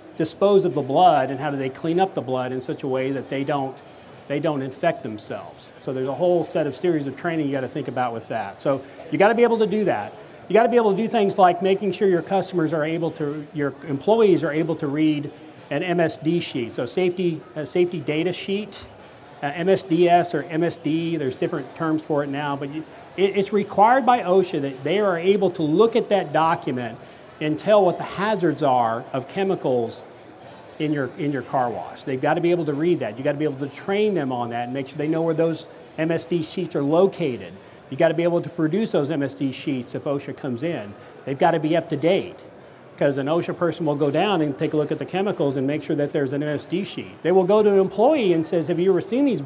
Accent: American